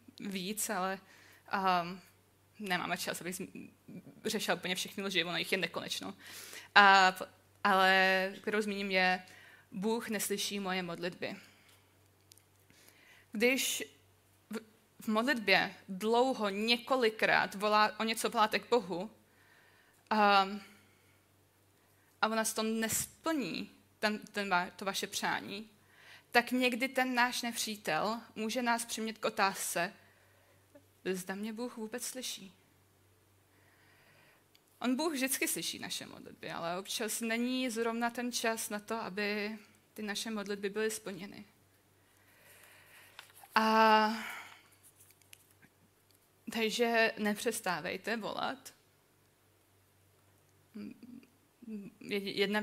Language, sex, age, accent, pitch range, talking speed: Czech, female, 20-39, native, 175-220 Hz, 100 wpm